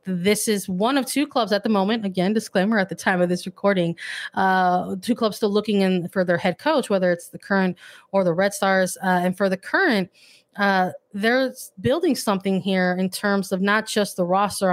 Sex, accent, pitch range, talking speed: female, American, 185-220 Hz, 210 wpm